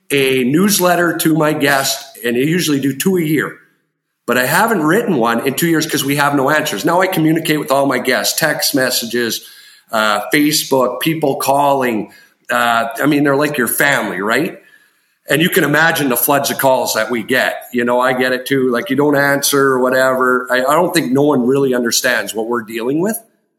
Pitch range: 130-175 Hz